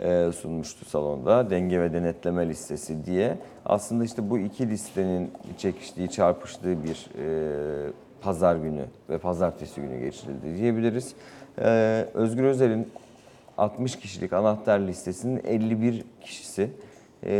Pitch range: 90-115 Hz